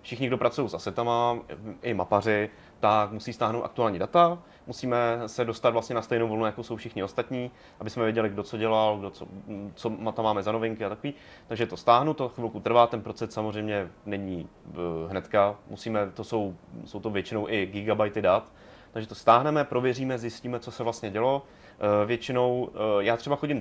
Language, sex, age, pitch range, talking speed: Czech, male, 30-49, 105-120 Hz, 180 wpm